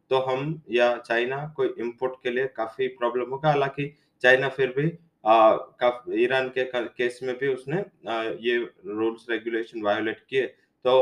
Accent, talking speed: Indian, 150 wpm